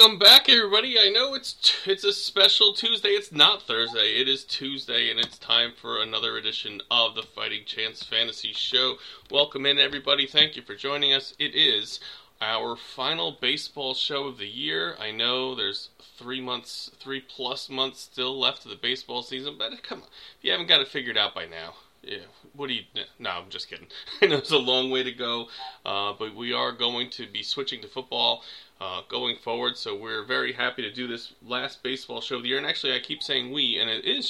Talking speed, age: 215 wpm, 30-49